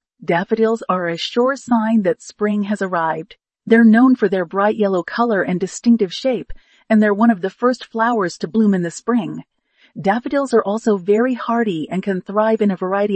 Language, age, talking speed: English, 40-59, 190 wpm